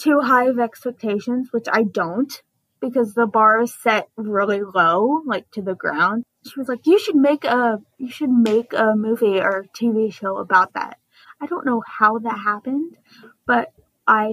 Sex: female